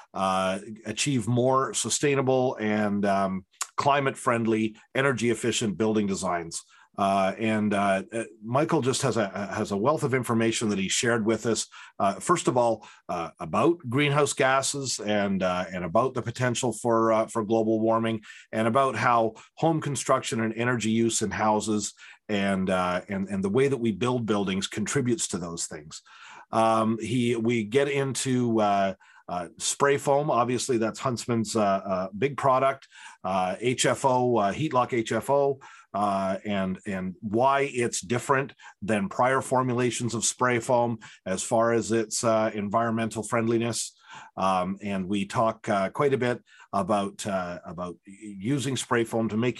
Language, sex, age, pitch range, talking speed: English, male, 40-59, 105-125 Hz, 155 wpm